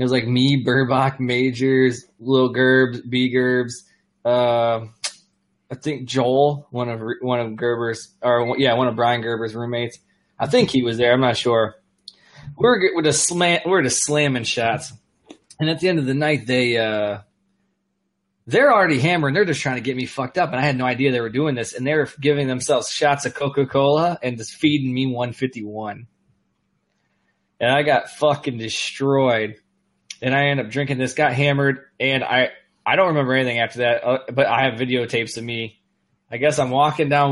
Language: English